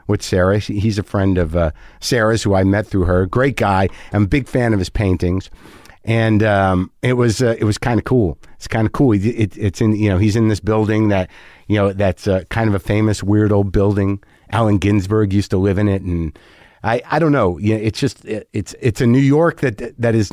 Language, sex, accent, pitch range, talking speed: English, male, American, 90-115 Hz, 240 wpm